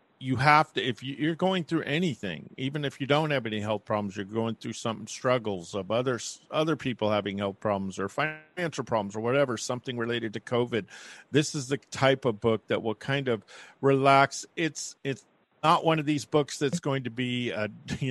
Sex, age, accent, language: male, 50-69, American, English